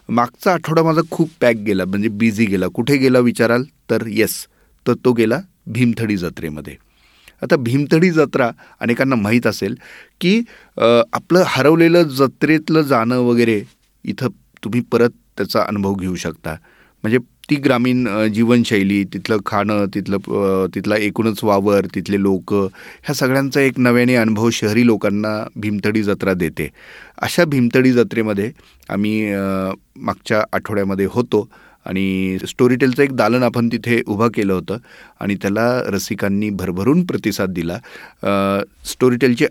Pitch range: 100-130 Hz